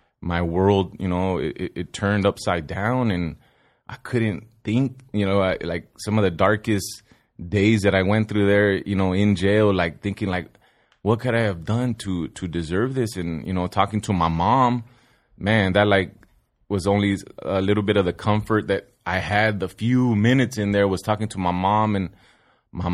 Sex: male